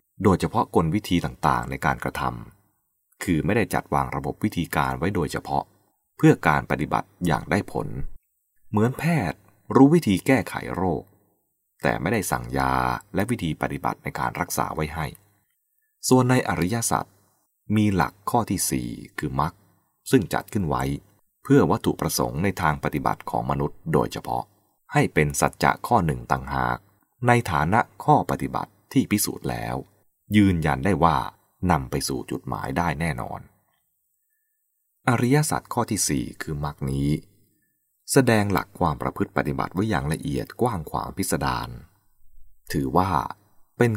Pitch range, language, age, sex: 70-105 Hz, English, 20-39, male